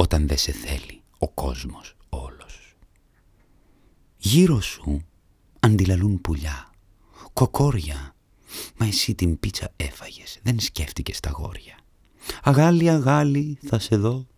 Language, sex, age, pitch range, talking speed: Greek, male, 40-59, 80-115 Hz, 110 wpm